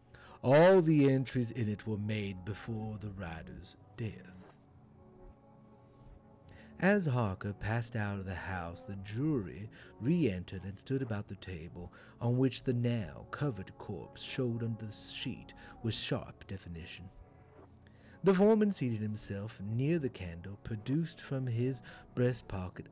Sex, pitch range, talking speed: male, 100-135 Hz, 130 wpm